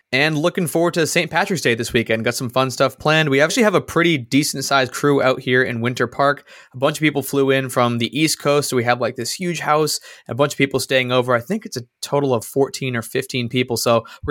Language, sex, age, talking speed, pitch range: English, male, 20-39, 260 wpm, 120-150 Hz